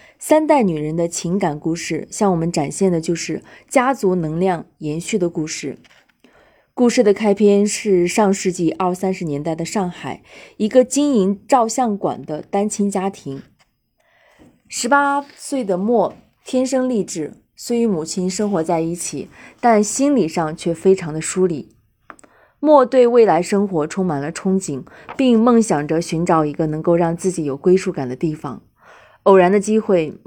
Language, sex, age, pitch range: Chinese, female, 20-39, 165-225 Hz